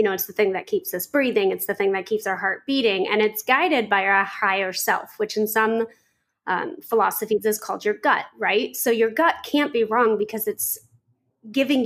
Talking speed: 220 wpm